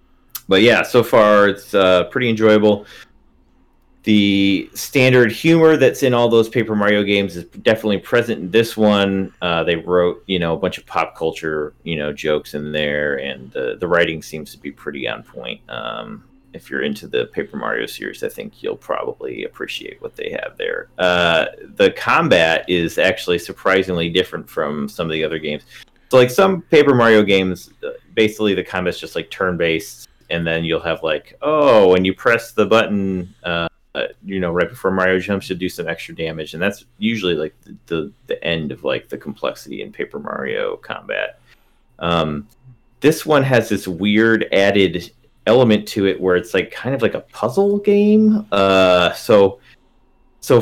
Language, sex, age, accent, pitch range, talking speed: English, male, 30-49, American, 90-135 Hz, 180 wpm